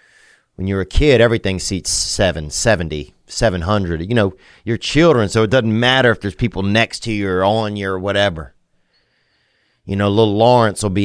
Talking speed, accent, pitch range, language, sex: 190 wpm, American, 95-120 Hz, English, male